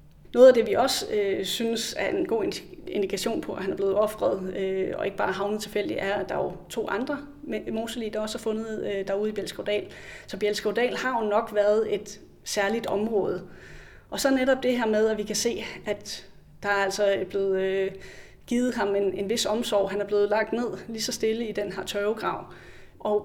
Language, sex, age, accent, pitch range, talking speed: Danish, female, 30-49, native, 195-230 Hz, 220 wpm